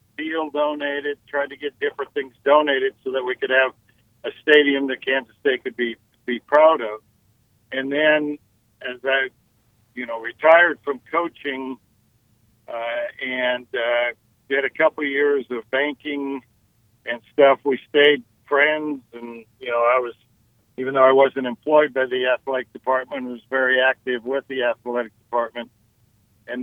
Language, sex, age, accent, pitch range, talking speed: English, male, 60-79, American, 120-145 Hz, 155 wpm